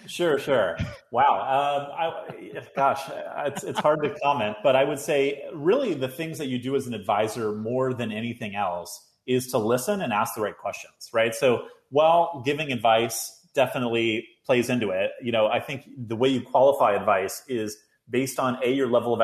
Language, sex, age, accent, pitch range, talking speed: English, male, 30-49, American, 105-130 Hz, 190 wpm